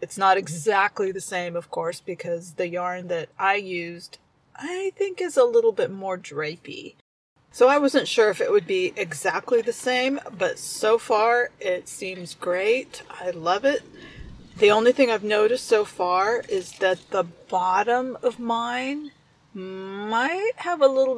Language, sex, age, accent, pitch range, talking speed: English, female, 40-59, American, 175-255 Hz, 165 wpm